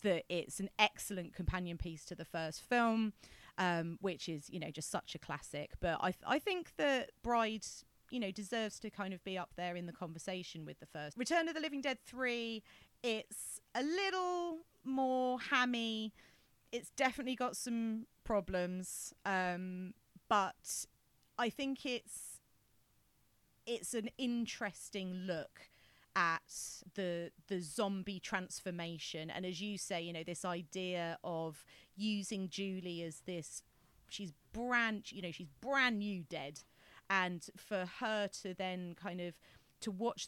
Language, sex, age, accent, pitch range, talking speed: English, female, 30-49, British, 165-215 Hz, 150 wpm